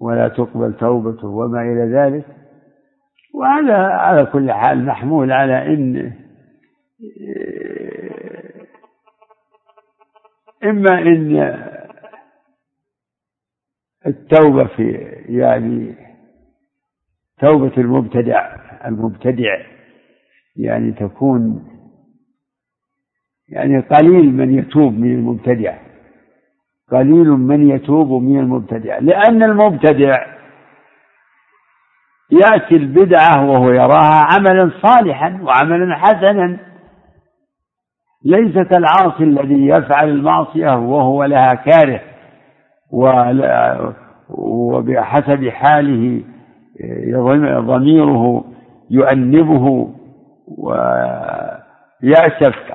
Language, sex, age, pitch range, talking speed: Arabic, male, 60-79, 130-190 Hz, 65 wpm